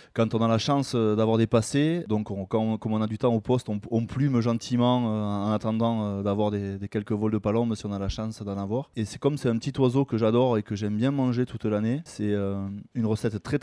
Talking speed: 260 wpm